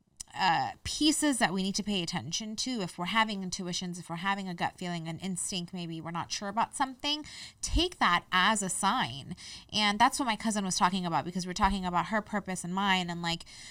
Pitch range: 175-205 Hz